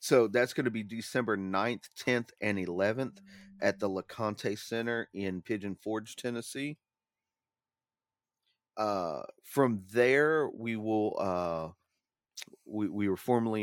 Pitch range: 100-120 Hz